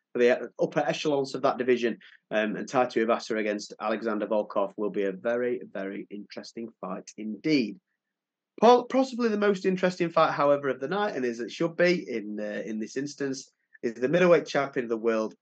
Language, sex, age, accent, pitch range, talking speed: English, male, 30-49, British, 115-165 Hz, 185 wpm